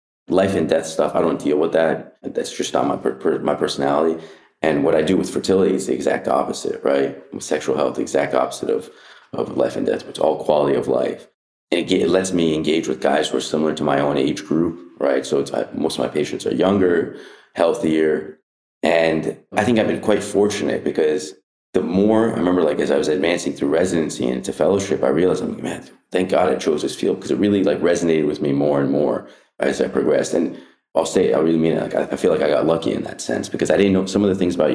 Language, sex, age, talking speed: English, male, 30-49, 250 wpm